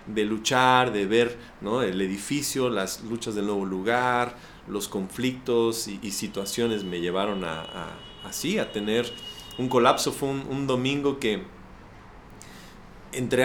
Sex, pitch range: male, 115-145 Hz